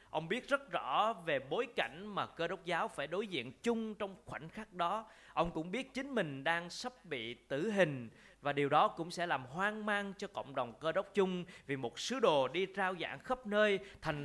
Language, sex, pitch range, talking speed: Vietnamese, male, 150-215 Hz, 225 wpm